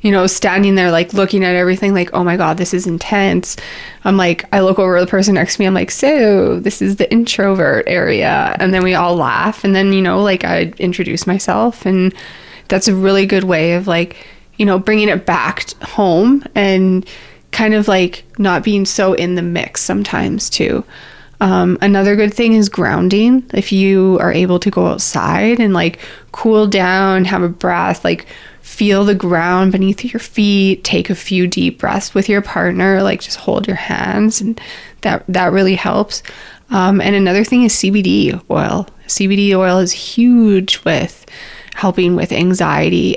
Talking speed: 185 wpm